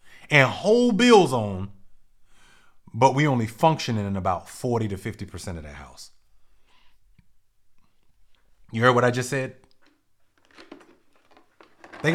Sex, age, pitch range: male, 30-49, 110-165 Hz